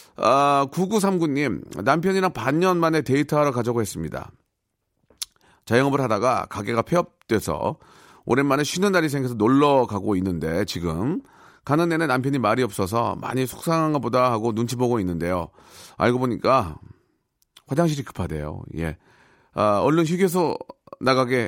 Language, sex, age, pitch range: Korean, male, 40-59, 100-145 Hz